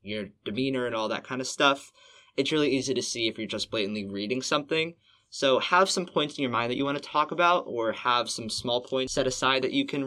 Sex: male